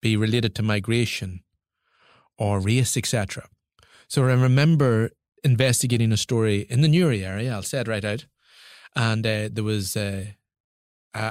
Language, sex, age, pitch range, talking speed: English, male, 30-49, 110-135 Hz, 150 wpm